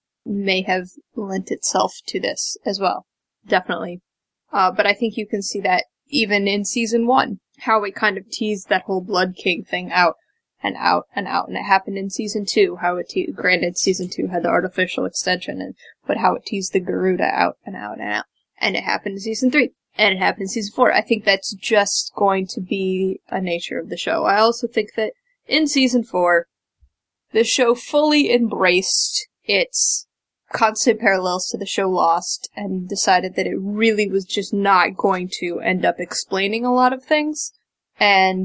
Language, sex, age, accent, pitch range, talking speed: English, female, 10-29, American, 185-230 Hz, 195 wpm